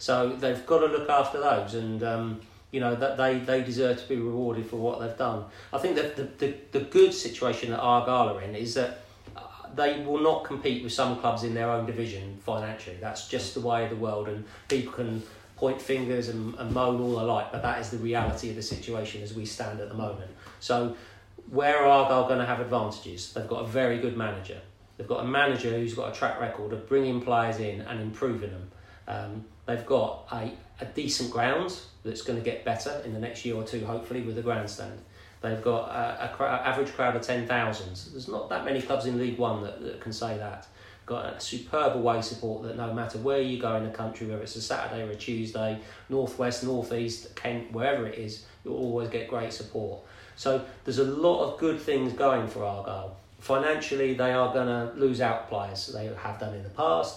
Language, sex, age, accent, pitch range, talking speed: English, male, 40-59, British, 110-125 Hz, 225 wpm